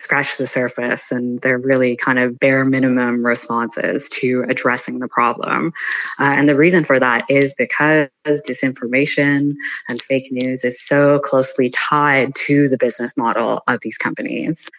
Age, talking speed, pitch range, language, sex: 20-39, 155 wpm, 125-145 Hz, English, female